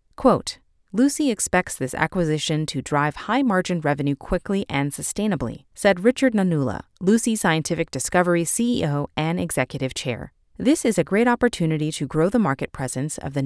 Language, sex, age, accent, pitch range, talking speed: English, female, 30-49, American, 140-205 Hz, 155 wpm